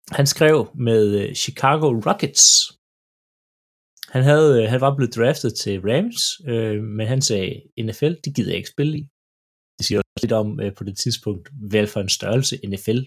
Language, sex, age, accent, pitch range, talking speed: Danish, male, 30-49, native, 105-140 Hz, 175 wpm